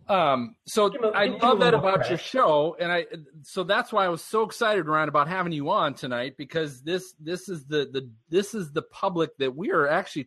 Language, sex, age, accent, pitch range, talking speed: English, male, 40-59, American, 135-175 Hz, 215 wpm